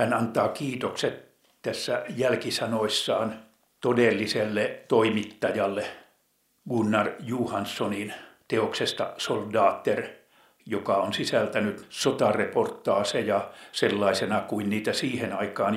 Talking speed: 75 wpm